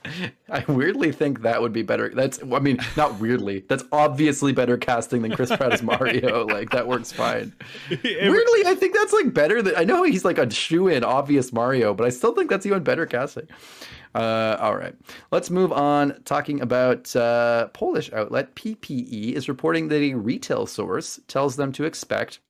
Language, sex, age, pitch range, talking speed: English, male, 30-49, 115-150 Hz, 185 wpm